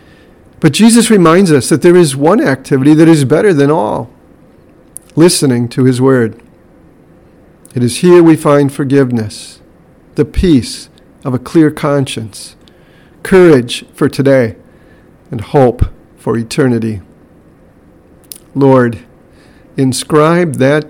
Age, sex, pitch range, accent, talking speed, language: 50-69, male, 125-150 Hz, American, 115 wpm, English